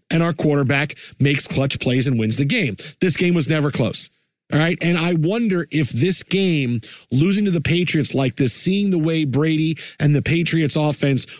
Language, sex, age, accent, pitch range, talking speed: English, male, 40-59, American, 140-165 Hz, 195 wpm